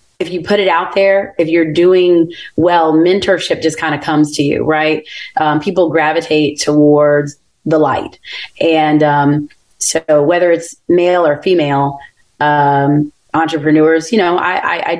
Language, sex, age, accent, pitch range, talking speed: English, female, 30-49, American, 150-175 Hz, 155 wpm